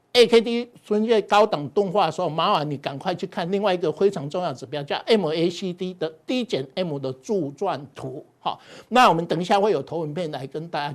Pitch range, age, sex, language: 155-220 Hz, 60-79, male, Chinese